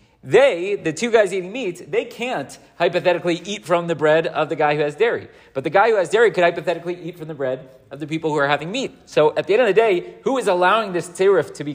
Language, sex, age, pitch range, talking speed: English, male, 30-49, 145-190 Hz, 265 wpm